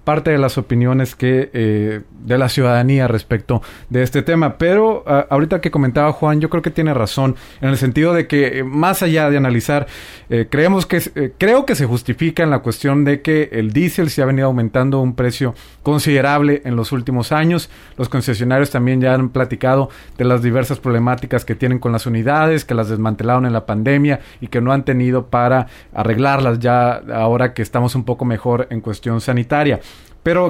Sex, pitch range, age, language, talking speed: male, 120-150 Hz, 30-49, Spanish, 195 wpm